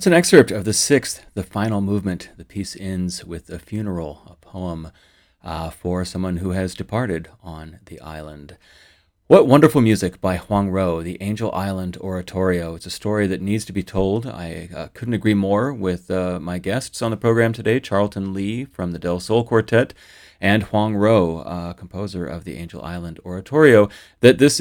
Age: 30-49